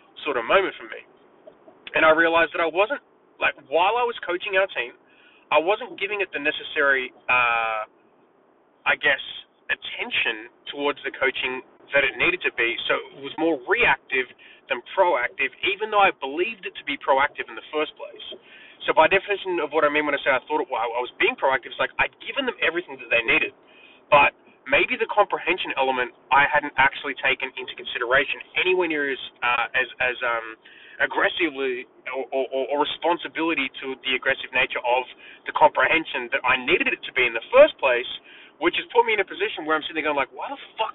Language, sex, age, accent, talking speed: English, male, 20-39, Australian, 200 wpm